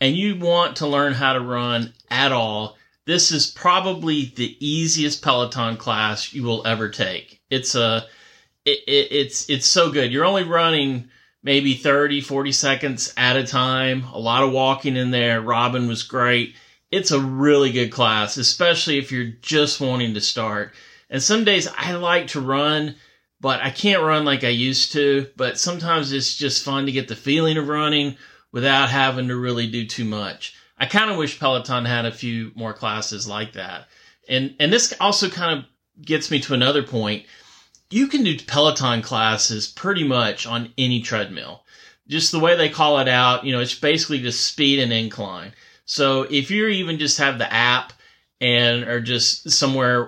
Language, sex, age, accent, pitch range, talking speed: English, male, 30-49, American, 120-150 Hz, 185 wpm